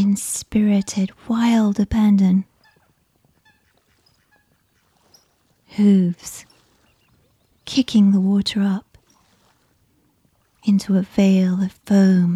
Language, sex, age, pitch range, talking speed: English, female, 30-49, 190-210 Hz, 65 wpm